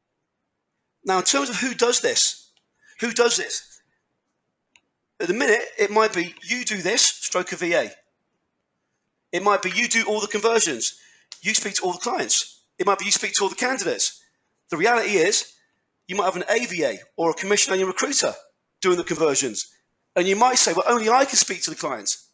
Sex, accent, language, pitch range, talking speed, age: male, British, English, 185-245 Hz, 200 wpm, 40-59